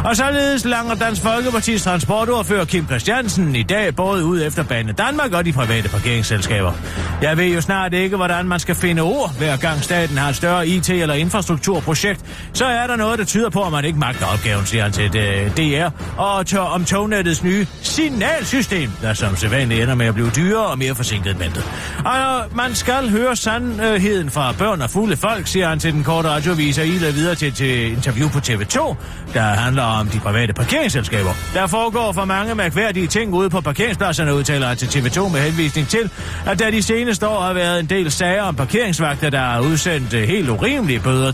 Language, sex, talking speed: Danish, male, 190 wpm